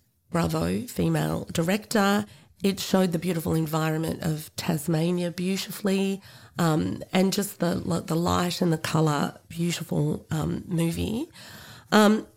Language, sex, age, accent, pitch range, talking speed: English, female, 30-49, Australian, 140-180 Hz, 115 wpm